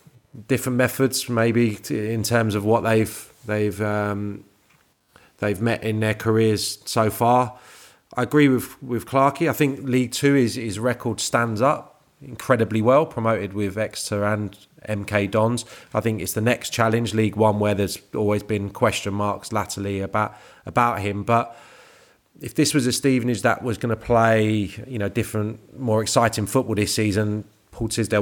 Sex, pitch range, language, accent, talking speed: male, 105-120 Hz, English, British, 165 wpm